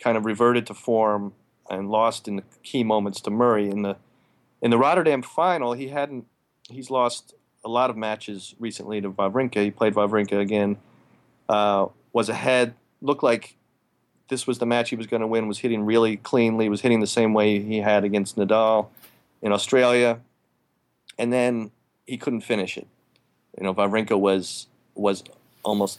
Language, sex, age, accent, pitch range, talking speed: English, male, 30-49, American, 100-120 Hz, 175 wpm